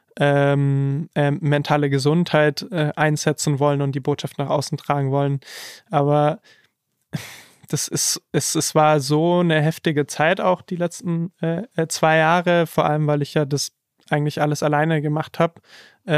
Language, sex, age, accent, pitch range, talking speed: German, male, 20-39, German, 150-165 Hz, 150 wpm